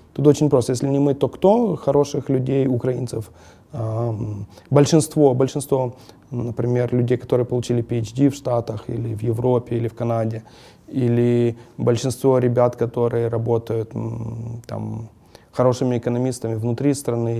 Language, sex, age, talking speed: English, male, 20-39, 125 wpm